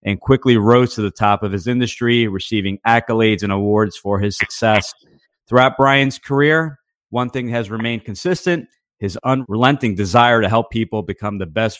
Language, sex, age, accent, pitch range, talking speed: English, male, 30-49, American, 105-130 Hz, 170 wpm